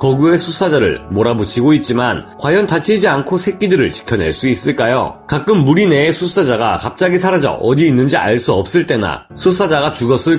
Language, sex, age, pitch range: Korean, male, 30-49, 125-180 Hz